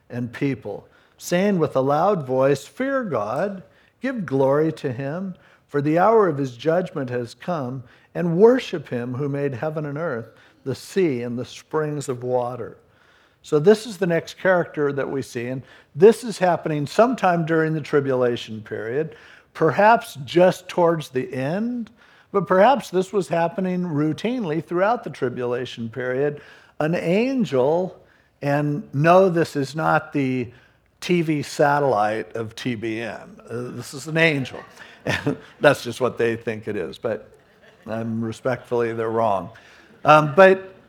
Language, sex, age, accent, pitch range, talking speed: English, male, 60-79, American, 125-180 Hz, 150 wpm